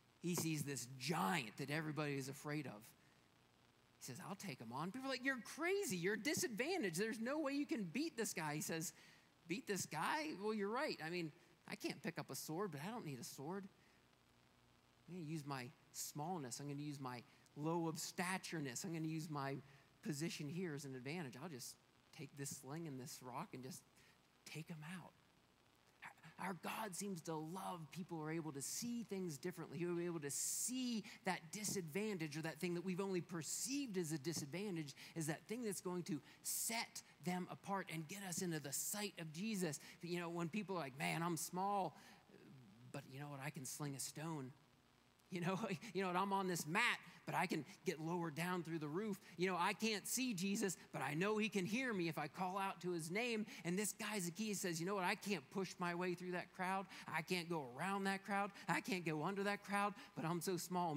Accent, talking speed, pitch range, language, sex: American, 220 wpm, 155-195 Hz, English, male